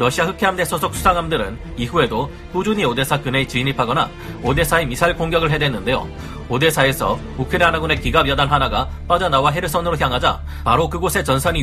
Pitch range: 130-170 Hz